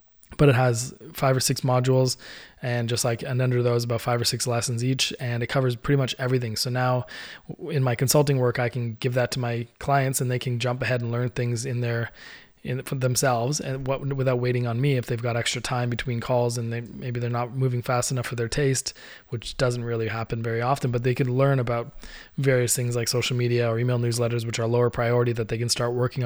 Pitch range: 120-130 Hz